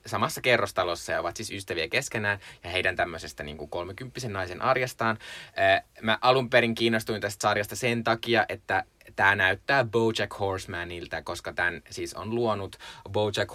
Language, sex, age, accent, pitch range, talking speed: Finnish, male, 20-39, native, 90-115 Hz, 140 wpm